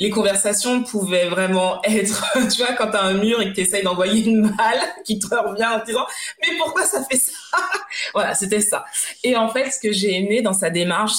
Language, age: French, 20-39